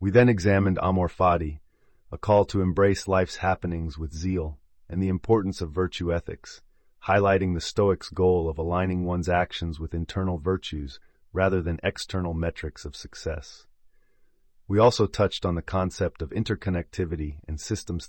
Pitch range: 80-95 Hz